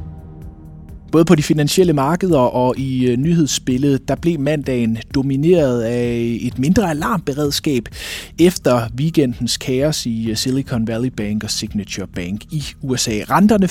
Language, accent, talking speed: Danish, native, 125 wpm